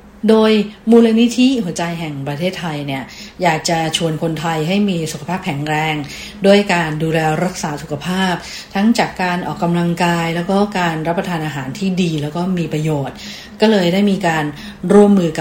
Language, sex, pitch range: English, female, 160-200 Hz